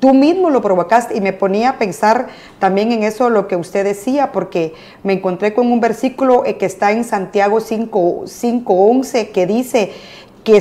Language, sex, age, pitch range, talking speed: Spanish, female, 40-59, 190-235 Hz, 175 wpm